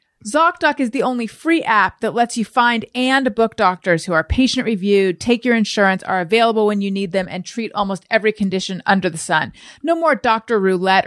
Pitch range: 190-235 Hz